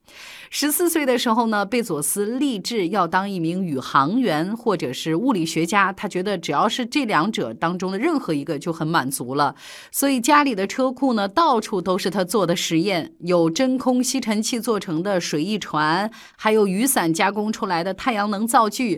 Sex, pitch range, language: female, 165-245 Hz, Chinese